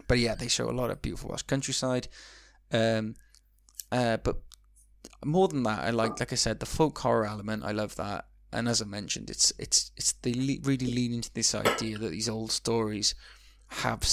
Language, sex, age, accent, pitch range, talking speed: English, male, 20-39, British, 105-120 Hz, 205 wpm